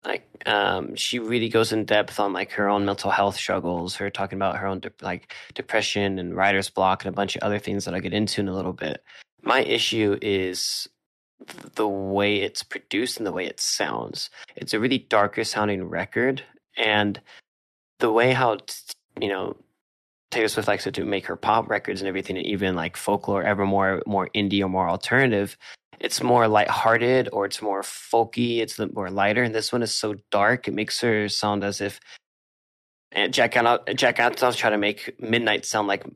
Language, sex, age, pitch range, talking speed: English, male, 20-39, 95-110 Hz, 200 wpm